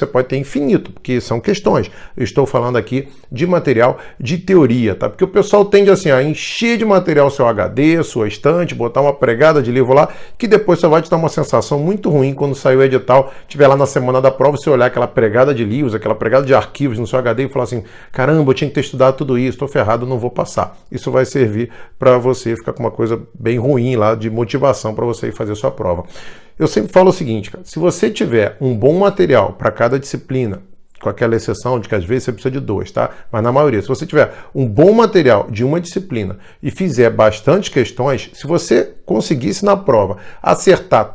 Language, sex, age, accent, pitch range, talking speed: Portuguese, male, 40-59, Brazilian, 115-160 Hz, 225 wpm